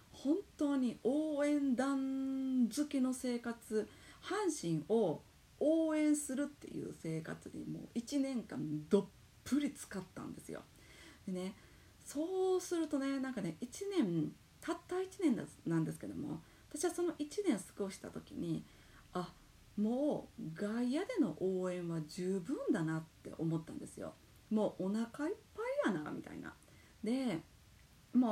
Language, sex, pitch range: Japanese, female, 190-305 Hz